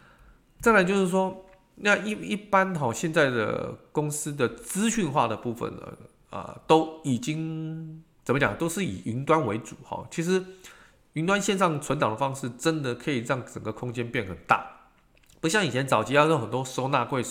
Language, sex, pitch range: Chinese, male, 120-160 Hz